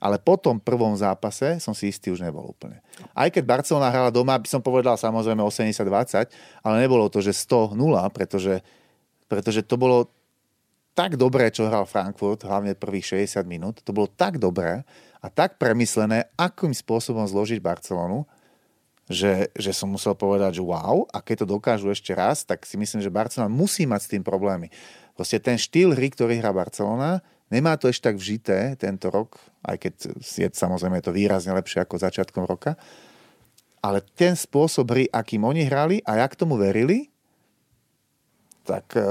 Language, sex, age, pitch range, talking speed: Slovak, male, 30-49, 100-130 Hz, 165 wpm